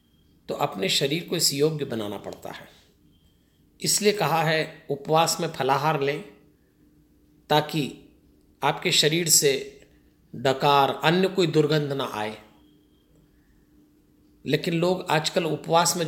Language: Hindi